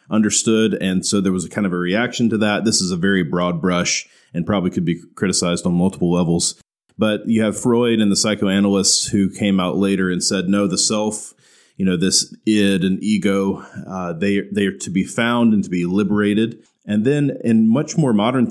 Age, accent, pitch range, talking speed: 30-49, American, 95-110 Hz, 210 wpm